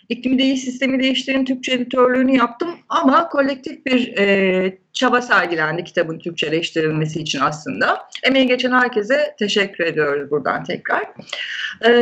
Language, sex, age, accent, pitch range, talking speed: Turkish, female, 30-49, native, 200-265 Hz, 125 wpm